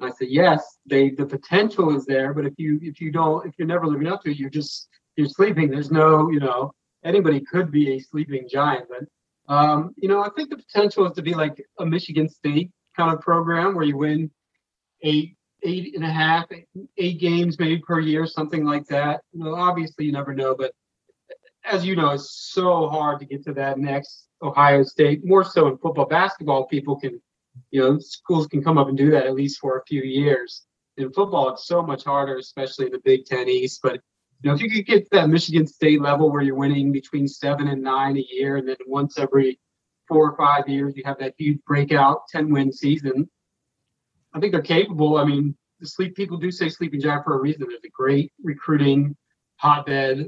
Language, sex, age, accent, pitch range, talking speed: English, male, 40-59, American, 135-165 Hz, 215 wpm